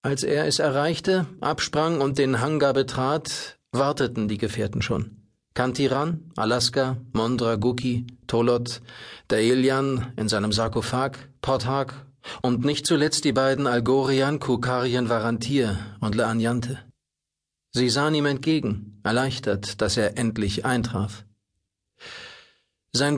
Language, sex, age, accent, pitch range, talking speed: German, male, 40-59, German, 110-135 Hz, 105 wpm